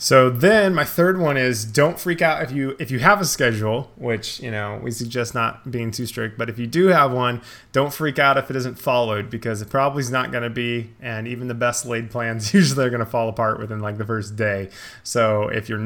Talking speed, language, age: 250 wpm, English, 20-39